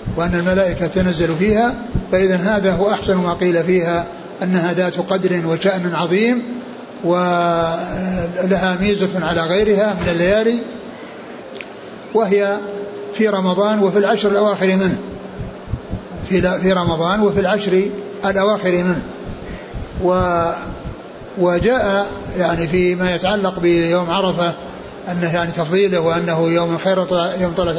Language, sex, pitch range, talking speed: Arabic, male, 175-200 Hz, 105 wpm